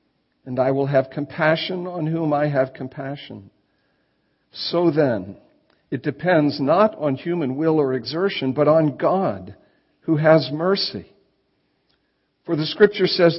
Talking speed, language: 135 wpm, English